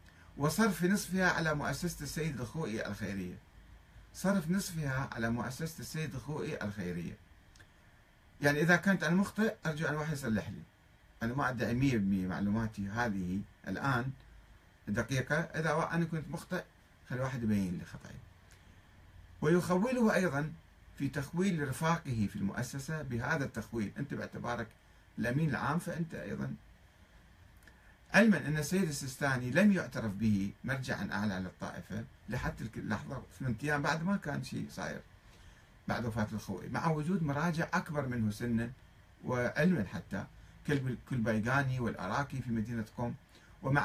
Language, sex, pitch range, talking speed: Arabic, male, 100-155 Hz, 125 wpm